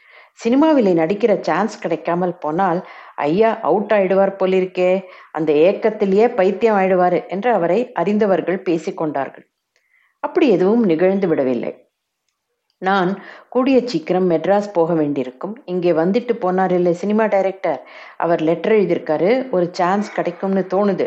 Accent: native